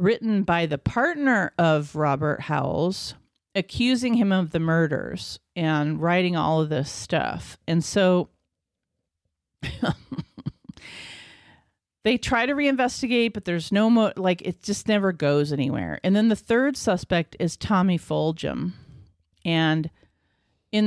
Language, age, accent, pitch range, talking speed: English, 40-59, American, 155-200 Hz, 125 wpm